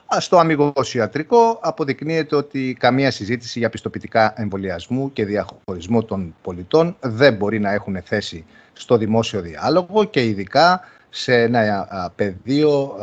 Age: 40-59